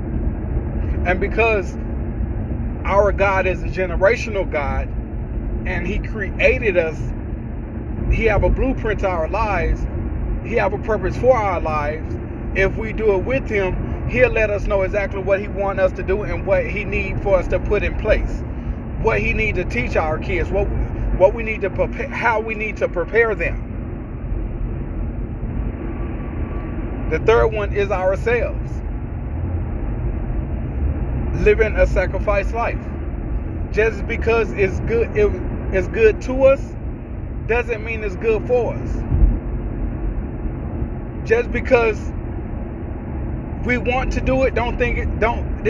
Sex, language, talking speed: male, English, 140 wpm